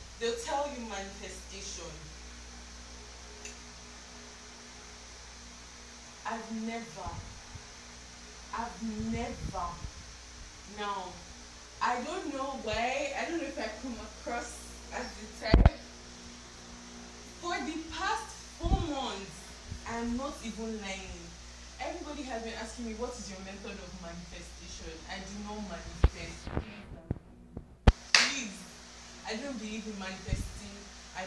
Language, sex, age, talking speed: English, female, 20-39, 100 wpm